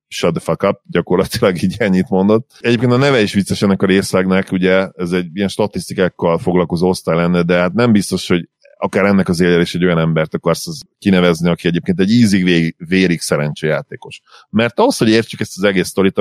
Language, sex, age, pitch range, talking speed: Hungarian, male, 30-49, 85-105 Hz, 195 wpm